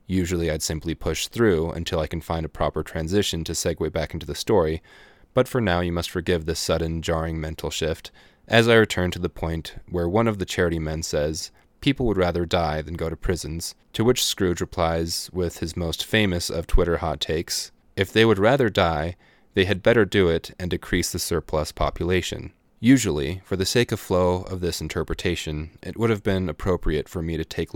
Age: 30-49